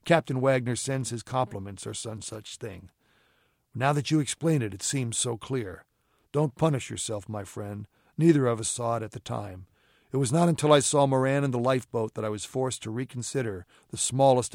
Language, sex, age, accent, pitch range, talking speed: English, male, 60-79, American, 105-130 Hz, 200 wpm